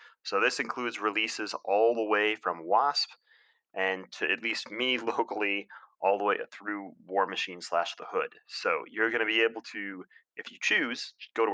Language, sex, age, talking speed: English, male, 30-49, 185 wpm